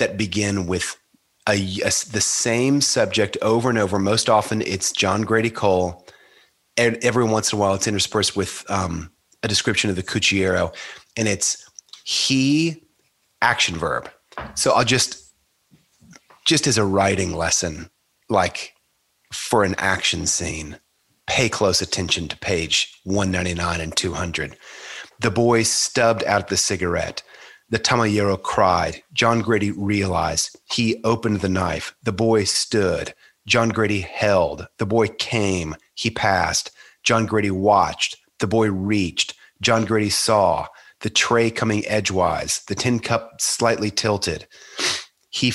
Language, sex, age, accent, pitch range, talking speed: English, male, 30-49, American, 95-120 Hz, 135 wpm